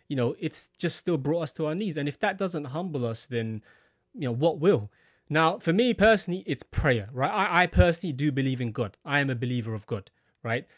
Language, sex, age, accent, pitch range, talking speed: English, male, 20-39, British, 125-160 Hz, 235 wpm